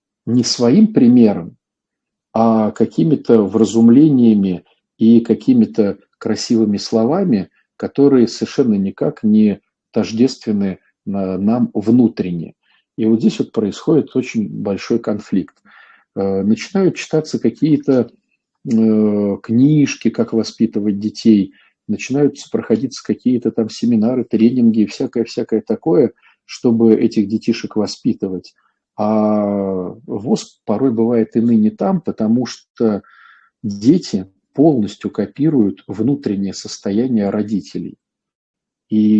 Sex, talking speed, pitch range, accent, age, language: male, 95 wpm, 105-130 Hz, native, 50-69, Russian